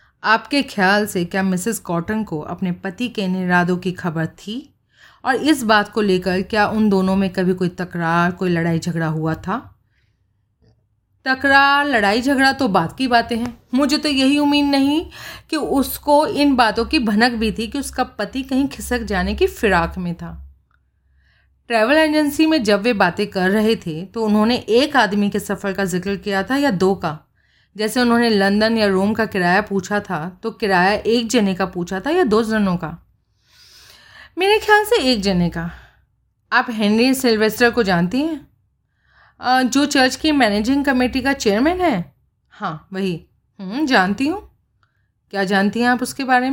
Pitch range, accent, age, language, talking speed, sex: 190-260 Hz, native, 30-49, Hindi, 175 wpm, female